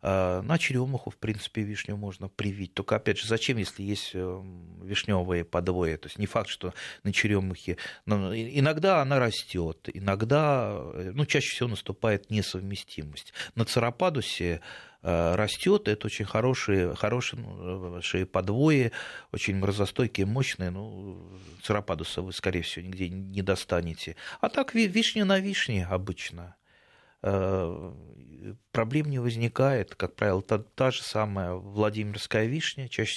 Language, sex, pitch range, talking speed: Russian, male, 95-120 Hz, 125 wpm